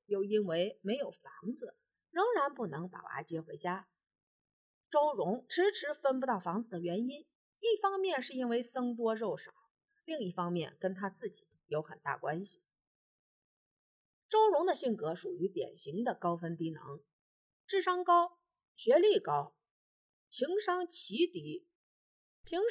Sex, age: female, 30-49